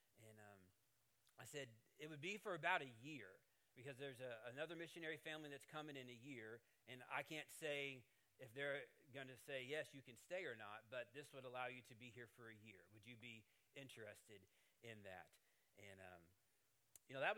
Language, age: English, 30-49